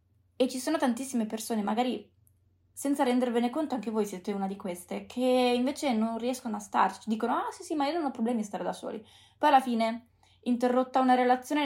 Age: 20-39